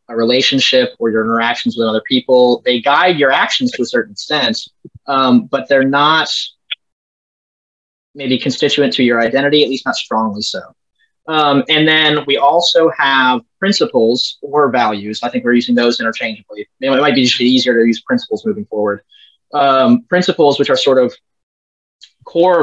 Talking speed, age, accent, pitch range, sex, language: 165 wpm, 20-39, American, 120-170 Hz, male, English